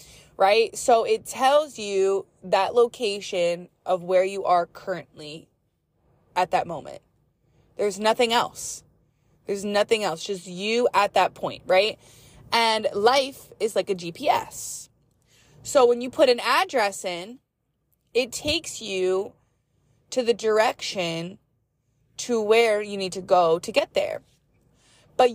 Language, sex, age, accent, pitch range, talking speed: English, female, 20-39, American, 185-240 Hz, 135 wpm